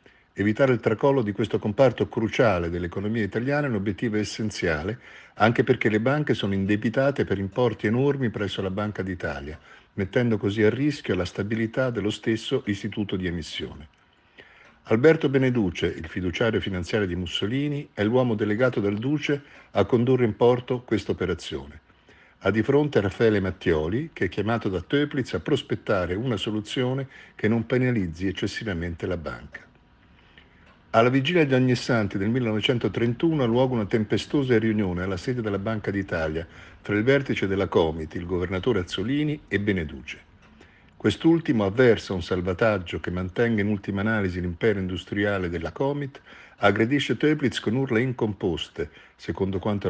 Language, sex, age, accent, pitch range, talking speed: Italian, male, 50-69, native, 95-125 Hz, 145 wpm